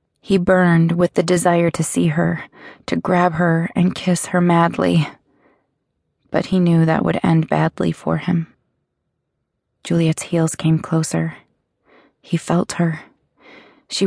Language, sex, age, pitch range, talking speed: English, female, 20-39, 160-180 Hz, 135 wpm